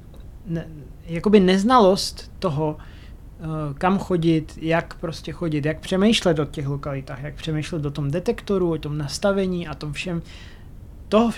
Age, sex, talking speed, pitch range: 30-49, male, 130 wpm, 150-180 Hz